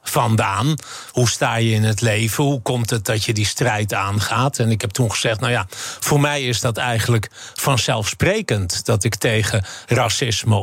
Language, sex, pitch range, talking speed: Dutch, male, 100-120 Hz, 175 wpm